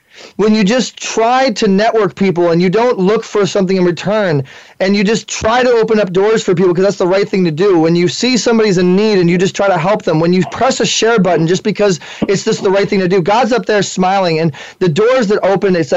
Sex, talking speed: male, 265 wpm